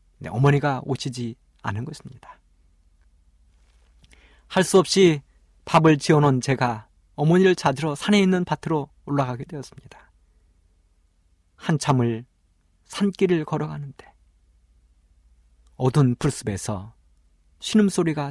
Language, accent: Korean, native